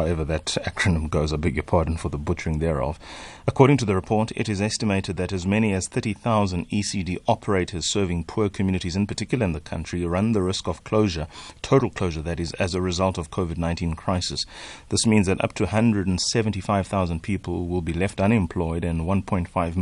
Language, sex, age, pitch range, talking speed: English, male, 30-49, 85-105 Hz, 190 wpm